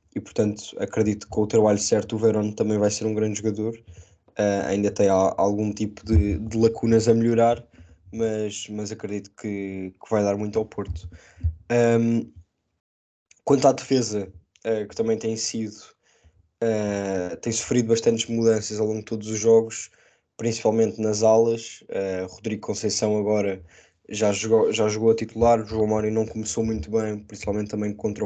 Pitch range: 95-115 Hz